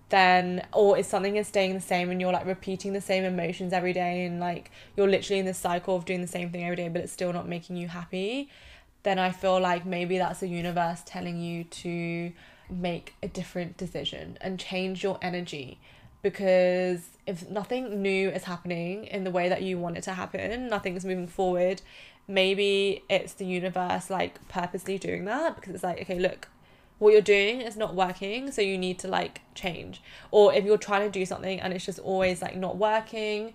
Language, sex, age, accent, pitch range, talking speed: English, female, 20-39, British, 180-200 Hz, 205 wpm